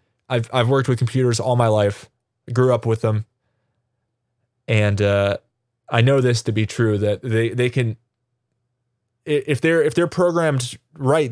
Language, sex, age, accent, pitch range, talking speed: English, male, 20-39, American, 110-130 Hz, 165 wpm